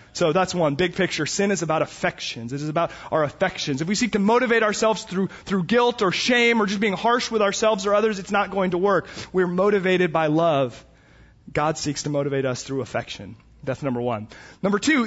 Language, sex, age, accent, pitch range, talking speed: English, male, 30-49, American, 185-255 Hz, 215 wpm